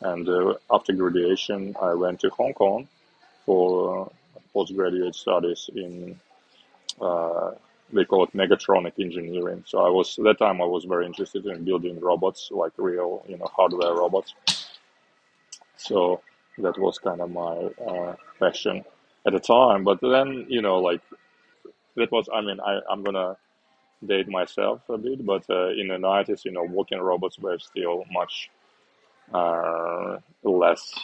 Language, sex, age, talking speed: English, male, 20-39, 155 wpm